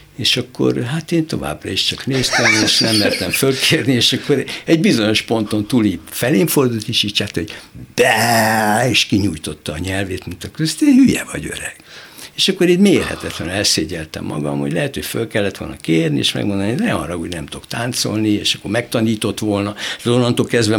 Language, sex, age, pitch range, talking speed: Hungarian, male, 60-79, 90-120 Hz, 180 wpm